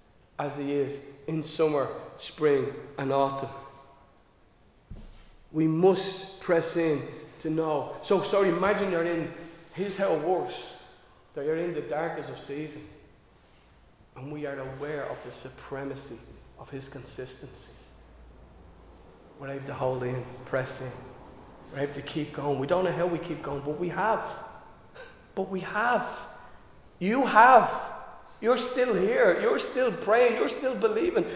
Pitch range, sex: 145-230 Hz, male